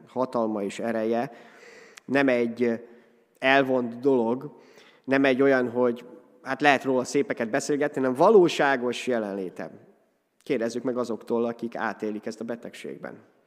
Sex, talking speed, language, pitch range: male, 120 wpm, Hungarian, 115-140 Hz